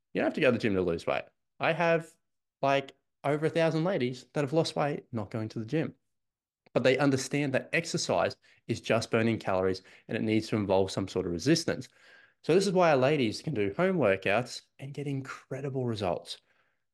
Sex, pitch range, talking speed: male, 110-145 Hz, 210 wpm